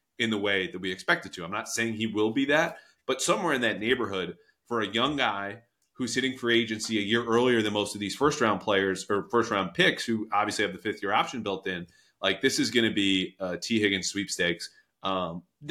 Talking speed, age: 235 wpm, 30-49